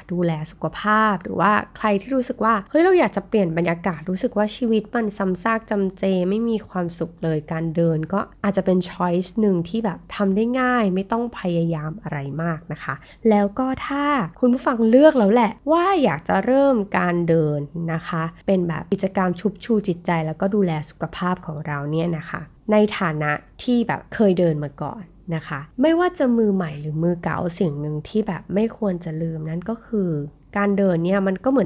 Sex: female